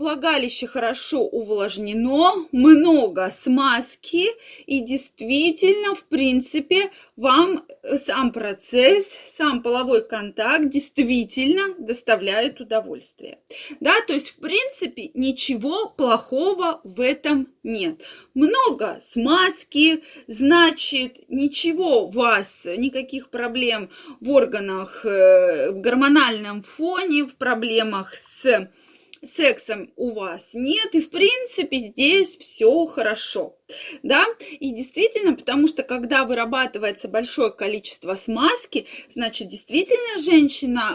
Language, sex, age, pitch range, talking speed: Russian, female, 20-39, 235-320 Hz, 100 wpm